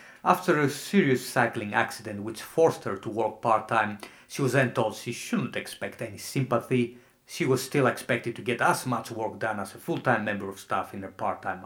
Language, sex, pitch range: English, male, 110-130 Hz